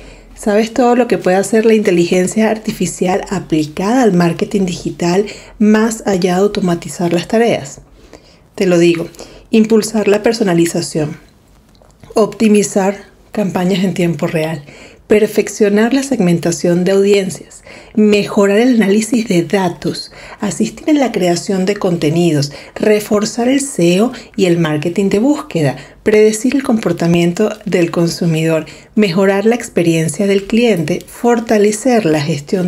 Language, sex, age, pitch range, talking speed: Spanish, female, 40-59, 180-230 Hz, 125 wpm